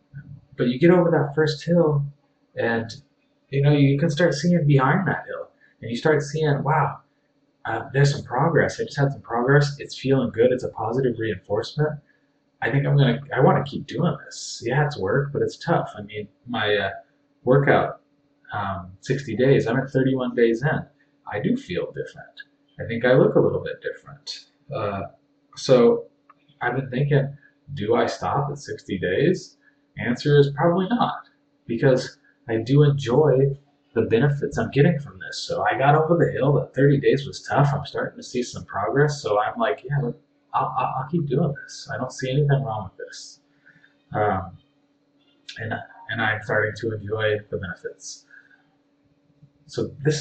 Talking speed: 180 wpm